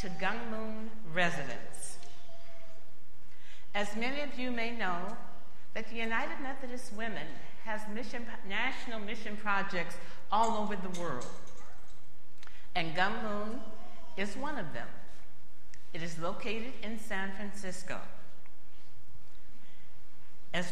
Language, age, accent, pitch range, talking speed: English, 50-69, American, 150-220 Hz, 110 wpm